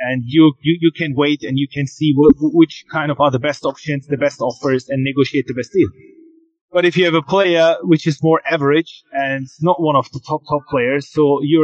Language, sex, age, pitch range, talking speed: English, male, 30-49, 135-165 Hz, 235 wpm